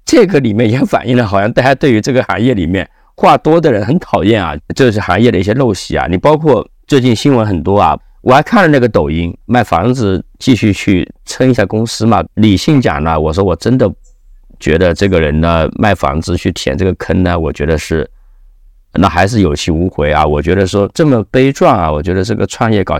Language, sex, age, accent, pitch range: Chinese, male, 50-69, native, 80-110 Hz